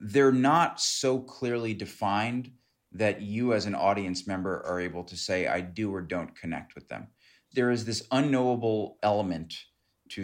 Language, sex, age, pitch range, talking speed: English, male, 30-49, 90-115 Hz, 165 wpm